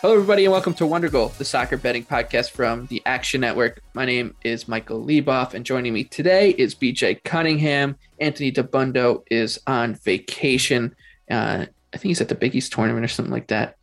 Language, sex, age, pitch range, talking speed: English, male, 20-39, 125-150 Hz, 195 wpm